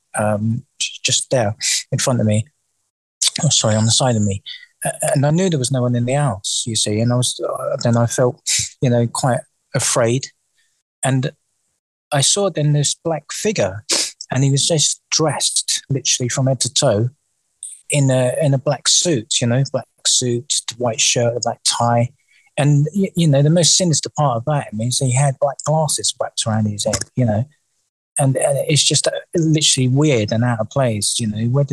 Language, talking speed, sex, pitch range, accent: English, 195 wpm, male, 115-145 Hz, British